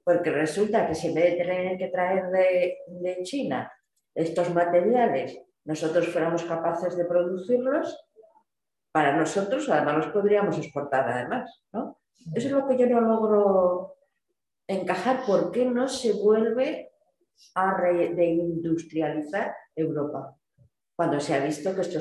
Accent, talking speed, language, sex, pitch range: Spanish, 140 wpm, Spanish, female, 165-230 Hz